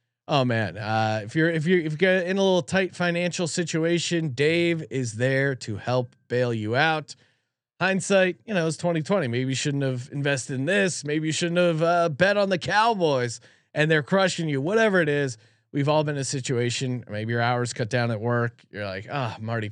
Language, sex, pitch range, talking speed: English, male, 120-165 Hz, 215 wpm